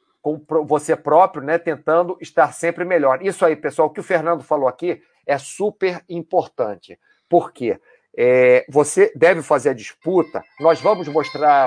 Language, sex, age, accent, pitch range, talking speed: Portuguese, male, 40-59, Brazilian, 145-180 Hz, 155 wpm